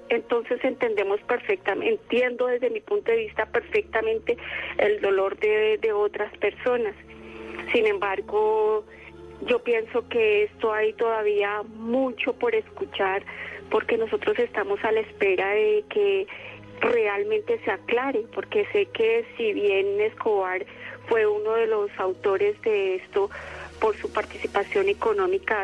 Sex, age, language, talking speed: female, 30-49, Spanish, 130 wpm